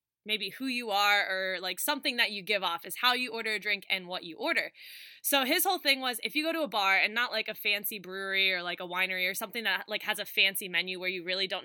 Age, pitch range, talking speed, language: 20-39, 200-250 Hz, 280 wpm, English